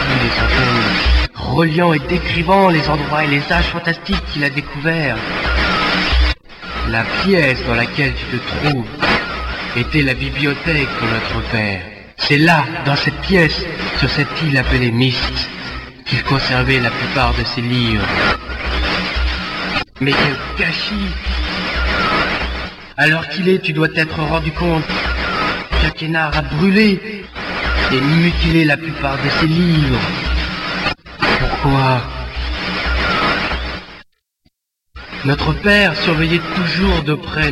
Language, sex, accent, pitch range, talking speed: French, male, French, 115-160 Hz, 115 wpm